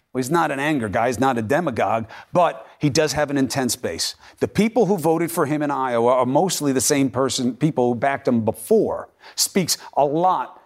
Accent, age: American, 50-69